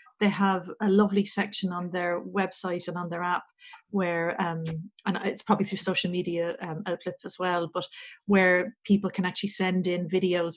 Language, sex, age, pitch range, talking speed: English, female, 40-59, 185-210 Hz, 180 wpm